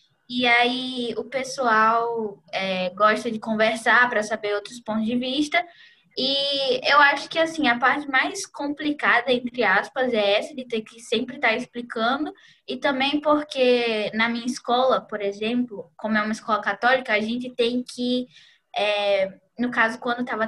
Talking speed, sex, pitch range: 150 wpm, female, 220-280 Hz